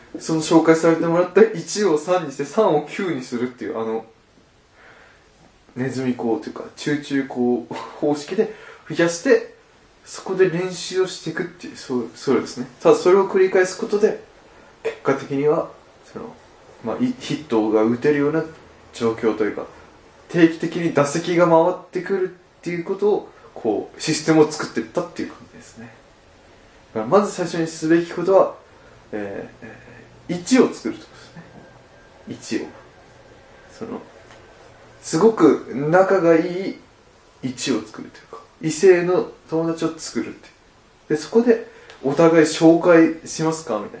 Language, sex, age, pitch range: Japanese, male, 20-39, 145-185 Hz